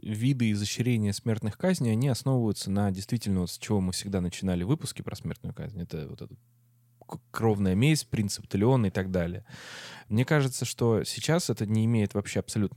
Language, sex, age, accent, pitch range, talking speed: Russian, male, 20-39, native, 95-120 Hz, 175 wpm